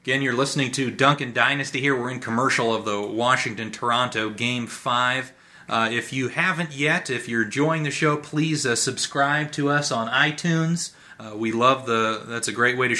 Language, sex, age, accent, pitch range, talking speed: English, male, 30-49, American, 110-135 Hz, 185 wpm